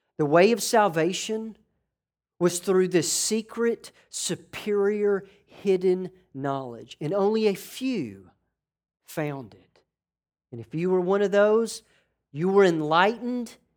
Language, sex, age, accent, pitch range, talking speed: English, male, 50-69, American, 145-205 Hz, 120 wpm